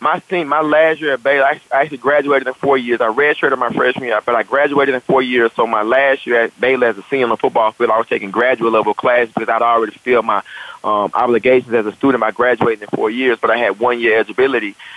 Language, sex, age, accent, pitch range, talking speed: English, male, 30-49, American, 115-135 Hz, 245 wpm